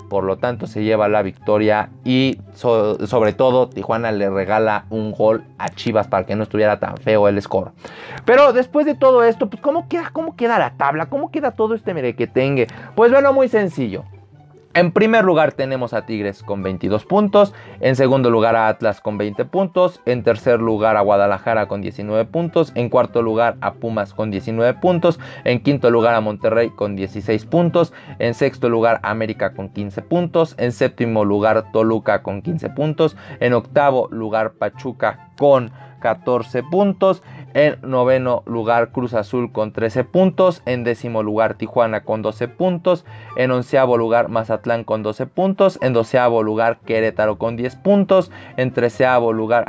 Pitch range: 110-145 Hz